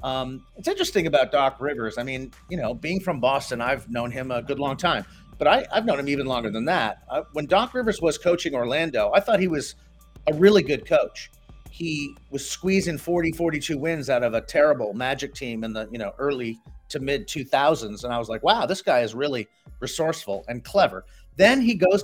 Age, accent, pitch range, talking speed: 30-49, American, 130-190 Hz, 220 wpm